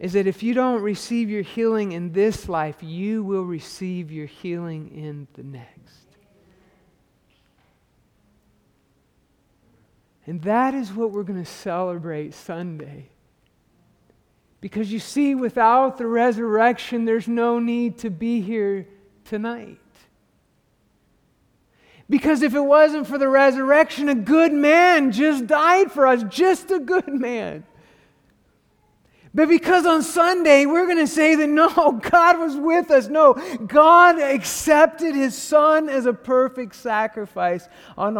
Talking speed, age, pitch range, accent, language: 130 wpm, 50-69, 175-275 Hz, American, English